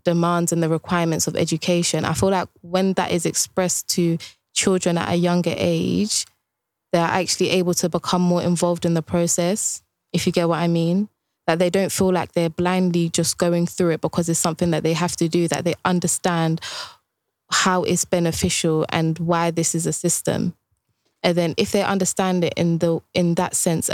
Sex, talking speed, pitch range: female, 195 wpm, 165-185 Hz